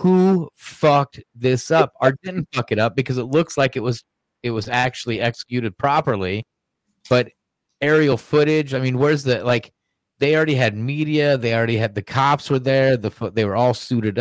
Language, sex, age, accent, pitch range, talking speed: English, male, 30-49, American, 105-125 Hz, 185 wpm